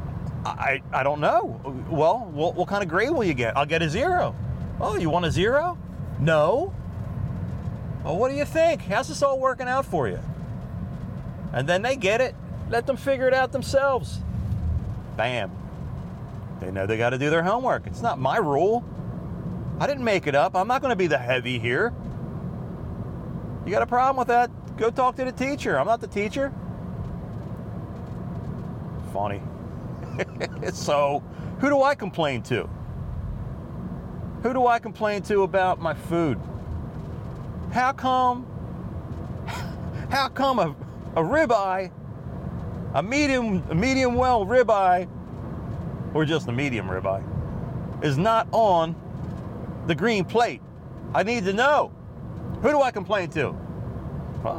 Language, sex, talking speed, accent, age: English, male, 150 wpm, American, 40-59